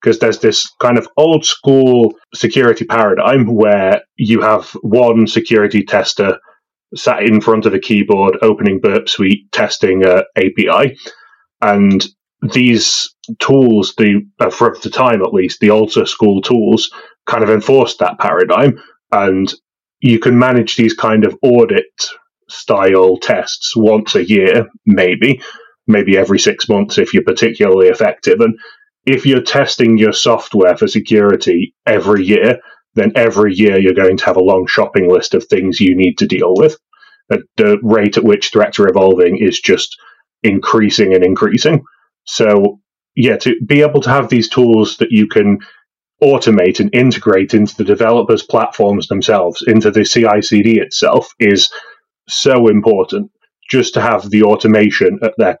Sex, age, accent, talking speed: male, 30-49, British, 155 wpm